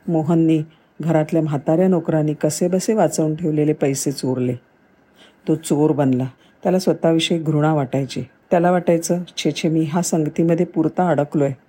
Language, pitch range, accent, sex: Marathi, 145-170 Hz, native, female